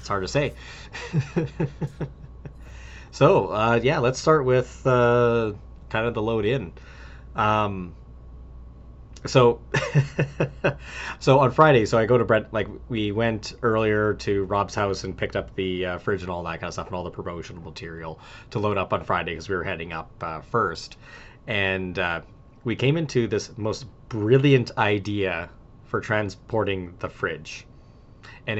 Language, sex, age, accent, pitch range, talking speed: English, male, 30-49, American, 95-125 Hz, 160 wpm